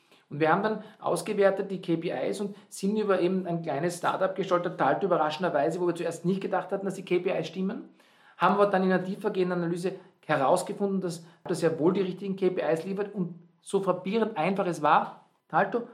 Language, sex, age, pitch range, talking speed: German, male, 50-69, 170-210 Hz, 190 wpm